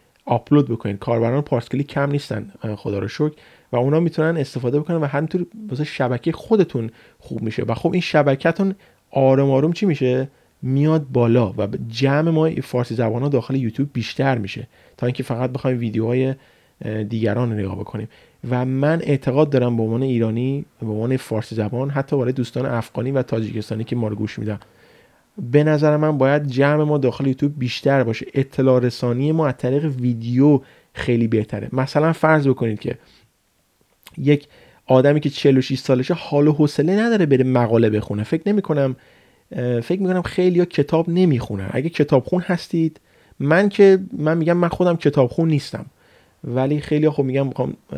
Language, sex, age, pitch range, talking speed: Persian, male, 30-49, 120-150 Hz, 160 wpm